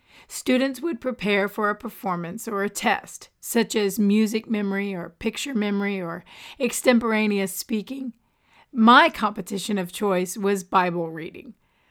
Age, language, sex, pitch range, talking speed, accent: 40-59, English, female, 195-230 Hz, 130 wpm, American